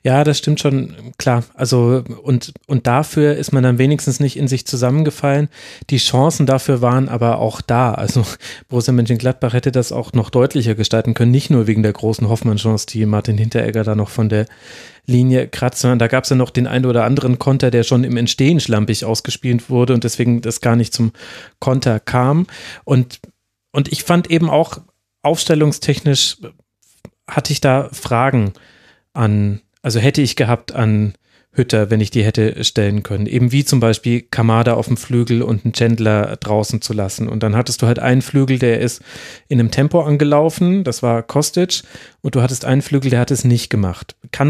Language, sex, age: German, male, 30-49